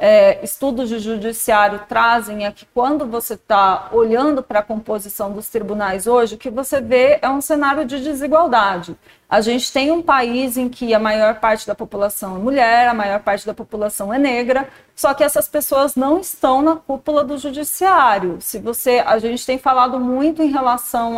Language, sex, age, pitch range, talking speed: Portuguese, female, 40-59, 210-285 Hz, 180 wpm